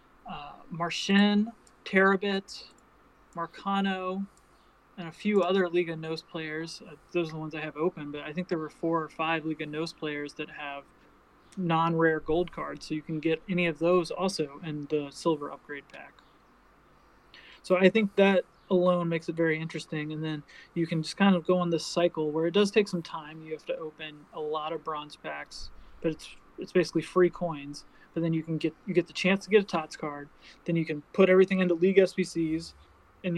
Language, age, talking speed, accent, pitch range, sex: English, 30-49, 205 wpm, American, 155-180 Hz, male